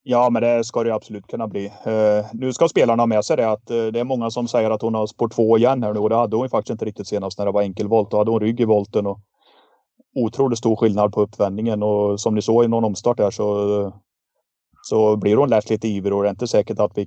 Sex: male